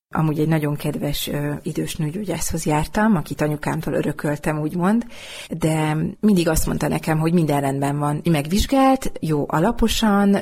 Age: 30-49